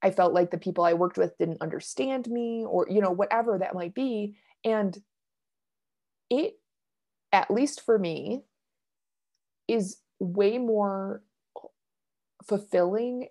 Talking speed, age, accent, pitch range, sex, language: 125 wpm, 20-39, American, 180-210 Hz, female, English